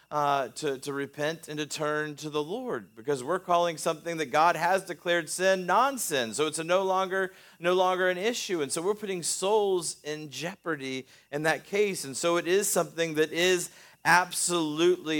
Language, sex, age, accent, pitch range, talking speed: English, male, 40-59, American, 155-190 Hz, 190 wpm